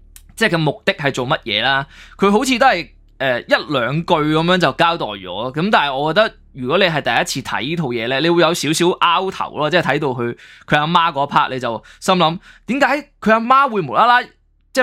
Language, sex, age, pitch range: Chinese, male, 20-39, 140-180 Hz